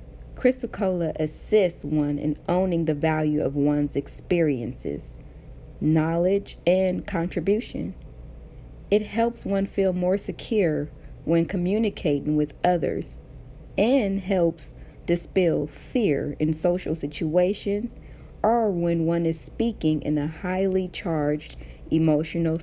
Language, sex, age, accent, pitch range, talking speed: English, female, 40-59, American, 145-180 Hz, 105 wpm